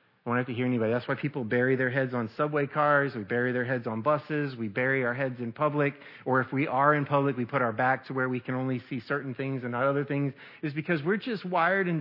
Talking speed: 275 wpm